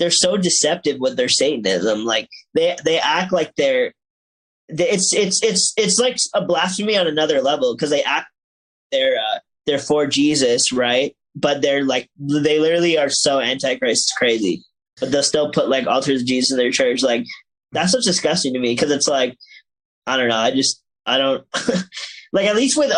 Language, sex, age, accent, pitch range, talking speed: English, male, 20-39, American, 130-190 Hz, 190 wpm